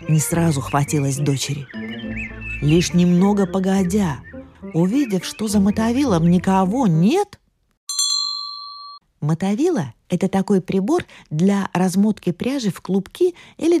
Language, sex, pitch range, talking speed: Russian, female, 155-220 Hz, 105 wpm